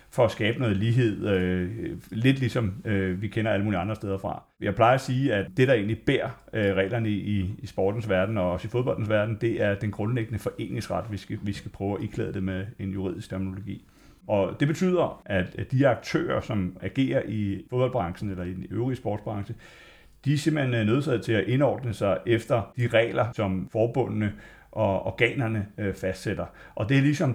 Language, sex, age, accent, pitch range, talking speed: Danish, male, 30-49, native, 100-120 Hz, 185 wpm